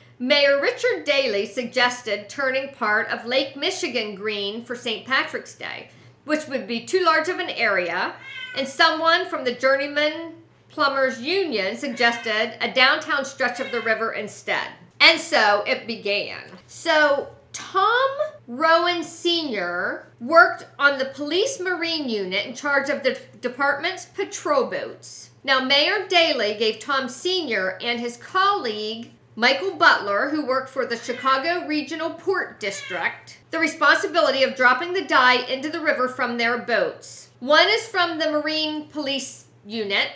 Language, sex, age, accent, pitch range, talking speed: English, female, 50-69, American, 245-320 Hz, 145 wpm